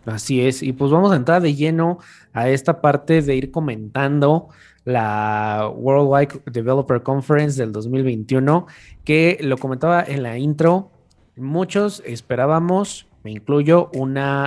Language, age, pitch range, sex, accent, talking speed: Spanish, 20-39, 125-160 Hz, male, Mexican, 135 wpm